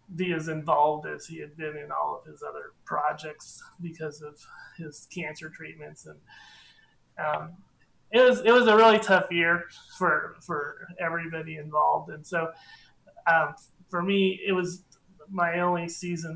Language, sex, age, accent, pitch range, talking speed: English, male, 30-49, American, 155-185 Hz, 155 wpm